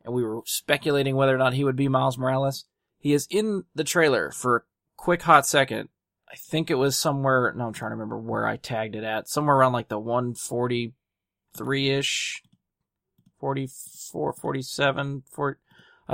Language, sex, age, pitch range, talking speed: English, male, 20-39, 120-145 Hz, 165 wpm